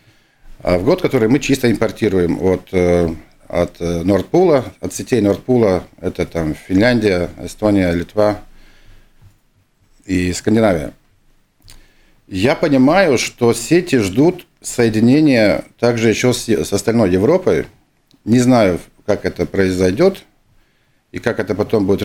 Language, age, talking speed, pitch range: Russian, 50-69, 110 wpm, 90-115 Hz